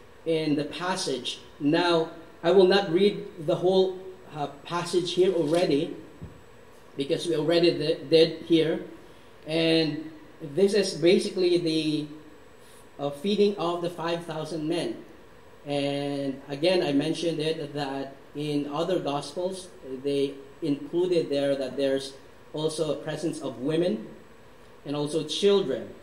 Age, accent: 30-49, Filipino